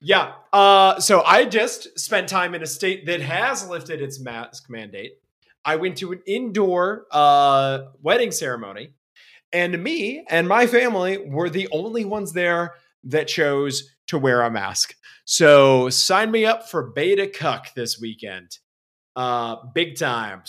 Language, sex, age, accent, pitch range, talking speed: English, male, 30-49, American, 105-150 Hz, 150 wpm